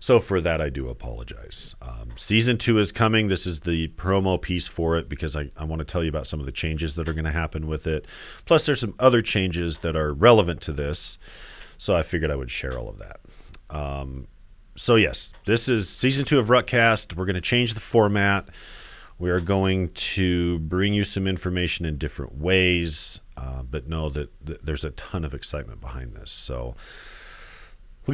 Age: 40-59